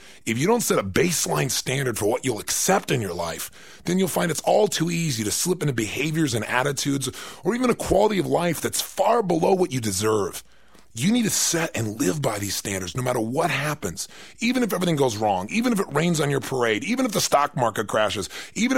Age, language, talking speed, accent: 30-49, English, 225 wpm, American